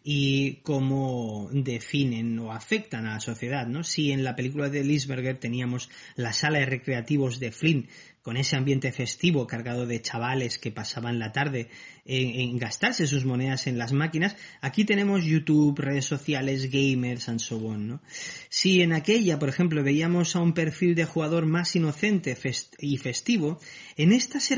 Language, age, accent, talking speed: Spanish, 30-49, Spanish, 170 wpm